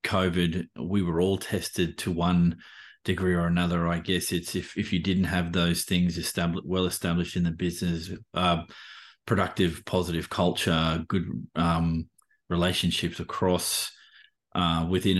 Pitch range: 85-90 Hz